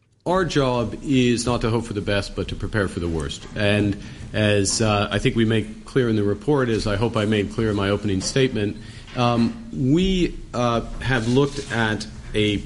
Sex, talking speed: male, 205 wpm